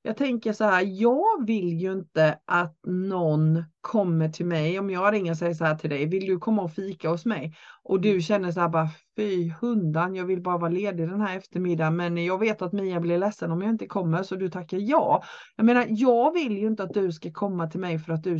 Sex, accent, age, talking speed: female, native, 30-49, 245 wpm